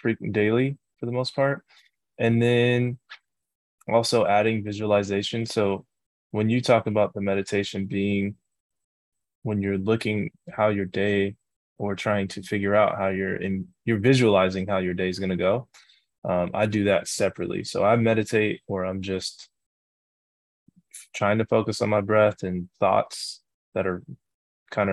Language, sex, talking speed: English, male, 150 wpm